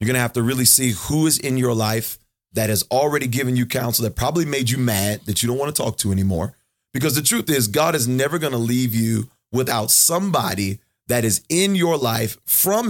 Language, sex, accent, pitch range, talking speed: English, male, American, 110-135 Hz, 235 wpm